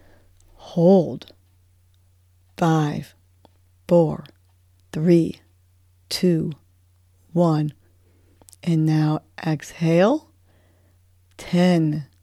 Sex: female